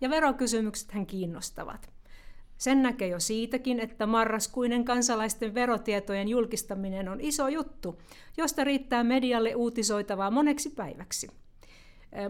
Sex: female